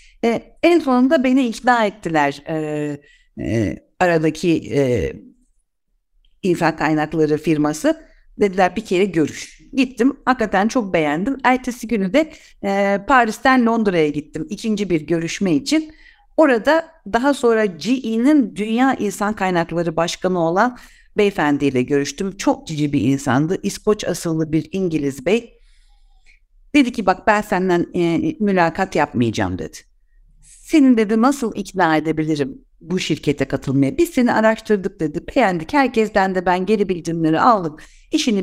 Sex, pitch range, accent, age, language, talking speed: female, 160-235 Hz, native, 60-79, Turkish, 125 wpm